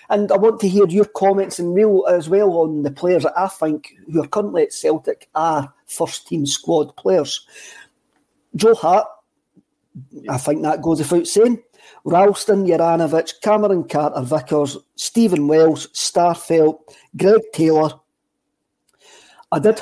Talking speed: 140 wpm